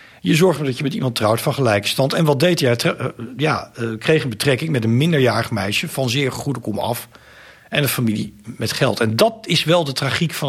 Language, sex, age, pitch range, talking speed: Dutch, male, 50-69, 115-145 Hz, 215 wpm